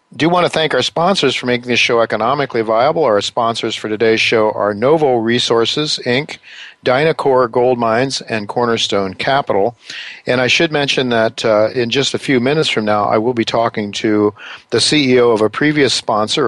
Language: English